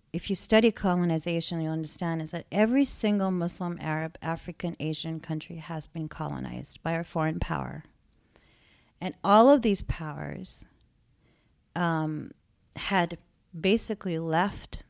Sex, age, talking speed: female, 40-59, 125 wpm